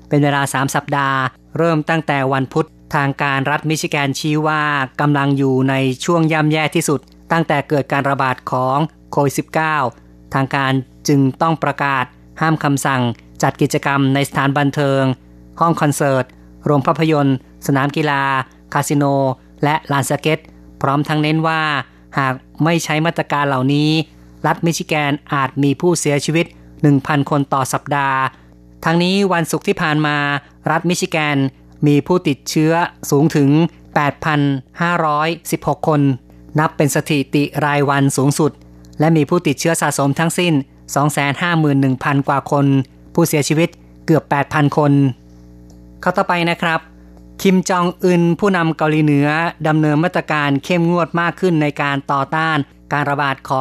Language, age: Thai, 20-39